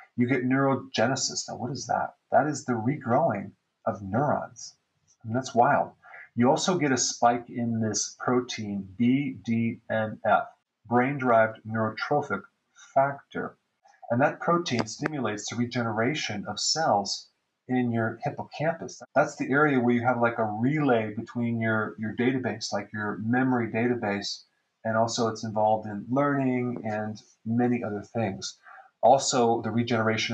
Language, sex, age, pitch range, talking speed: English, male, 30-49, 110-130 Hz, 135 wpm